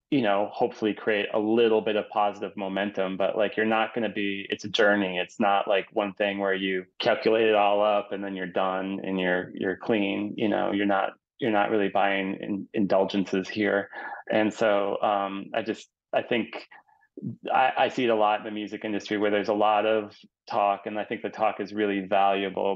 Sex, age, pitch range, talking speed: male, 20-39, 100-110 Hz, 210 wpm